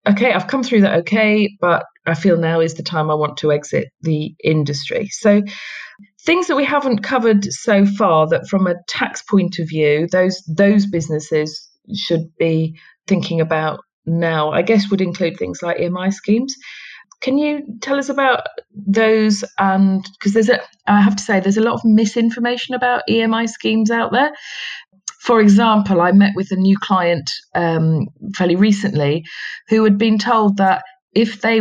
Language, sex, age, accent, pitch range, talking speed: English, female, 40-59, British, 170-220 Hz, 175 wpm